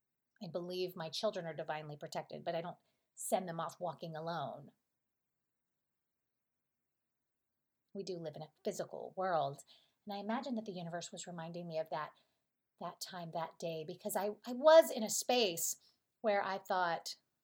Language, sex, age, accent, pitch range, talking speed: English, female, 30-49, American, 175-235 Hz, 160 wpm